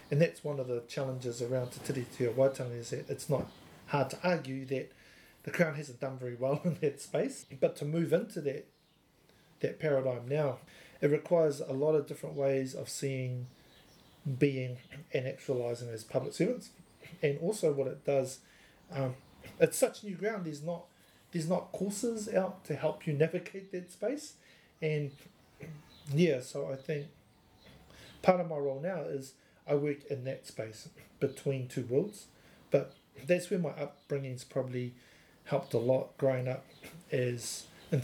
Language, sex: English, male